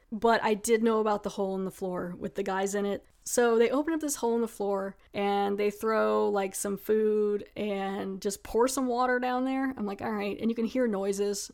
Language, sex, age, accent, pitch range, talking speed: English, female, 20-39, American, 200-235 Hz, 240 wpm